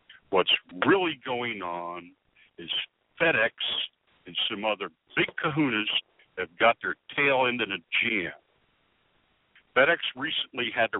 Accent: American